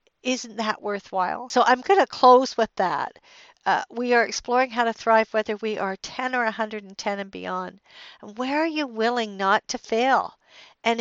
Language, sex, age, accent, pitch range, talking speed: English, female, 60-79, American, 220-260 Hz, 185 wpm